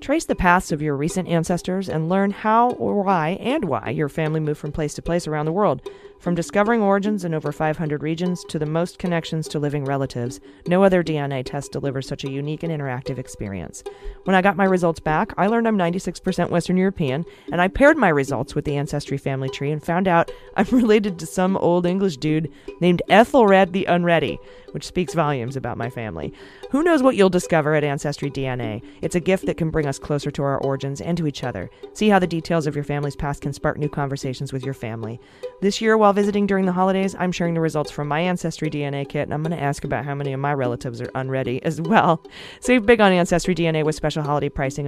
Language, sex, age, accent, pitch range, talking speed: English, female, 30-49, American, 140-185 Hz, 225 wpm